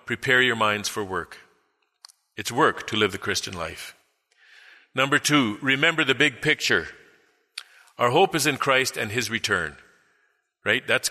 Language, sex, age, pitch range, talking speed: English, male, 50-69, 120-170 Hz, 150 wpm